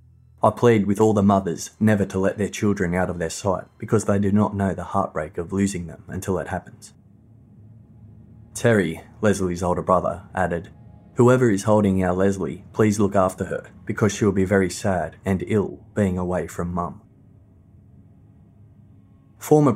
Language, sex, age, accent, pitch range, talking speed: English, male, 20-39, Australian, 90-110 Hz, 165 wpm